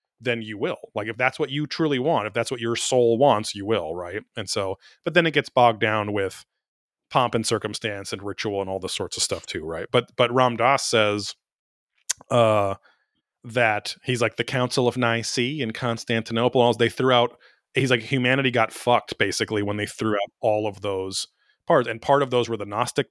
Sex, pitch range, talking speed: male, 105-125 Hz, 210 wpm